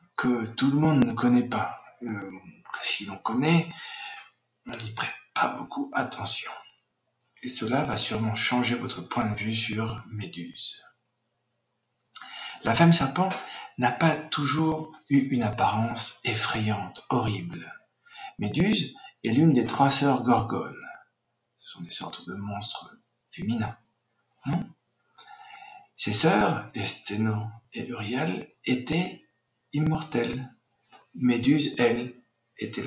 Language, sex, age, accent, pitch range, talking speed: French, male, 60-79, French, 115-155 Hz, 115 wpm